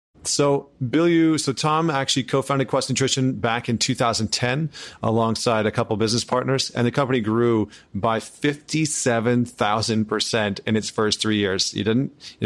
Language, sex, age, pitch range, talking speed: English, male, 30-49, 110-130 Hz, 160 wpm